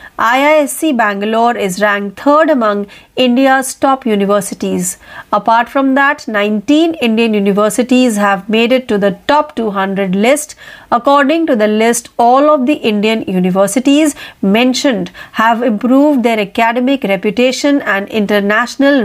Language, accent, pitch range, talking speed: Marathi, native, 210-275 Hz, 125 wpm